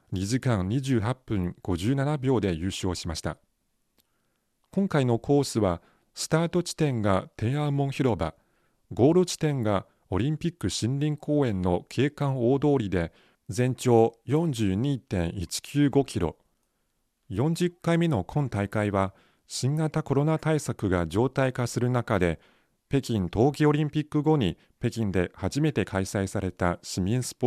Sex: male